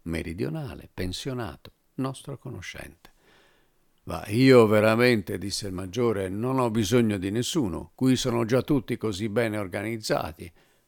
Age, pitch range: 50-69, 85-125 Hz